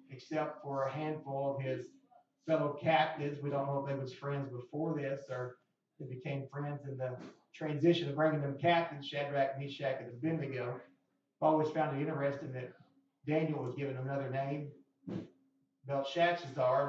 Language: English